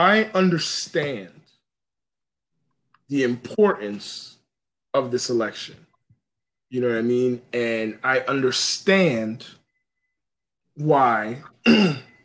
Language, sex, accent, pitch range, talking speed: English, male, American, 130-180 Hz, 80 wpm